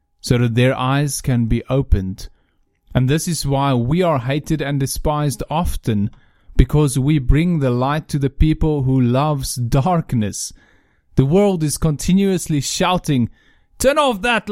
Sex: male